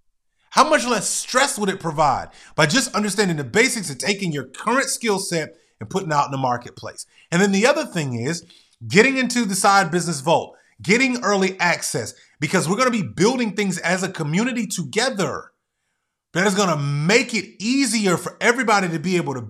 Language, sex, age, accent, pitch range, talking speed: English, male, 30-49, American, 145-215 Hz, 195 wpm